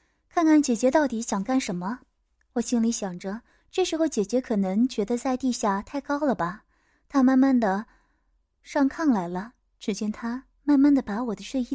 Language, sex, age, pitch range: Chinese, female, 20-39, 215-280 Hz